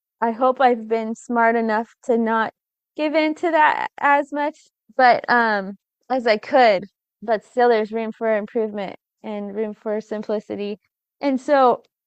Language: English